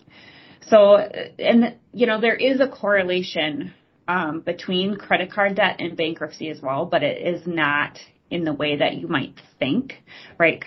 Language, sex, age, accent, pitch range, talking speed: English, female, 30-49, American, 155-195 Hz, 165 wpm